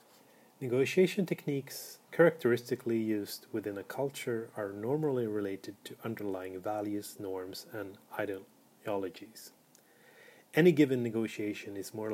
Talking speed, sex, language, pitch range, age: 105 wpm, male, English, 100-125 Hz, 30-49